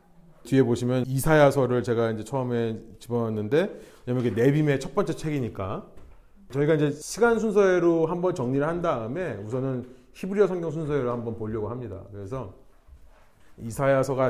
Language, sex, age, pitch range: Korean, male, 30-49, 110-155 Hz